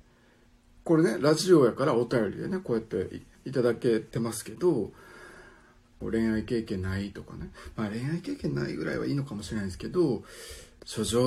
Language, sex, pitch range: Japanese, male, 100-150 Hz